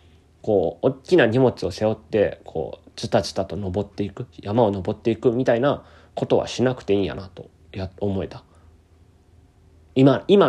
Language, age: Japanese, 20-39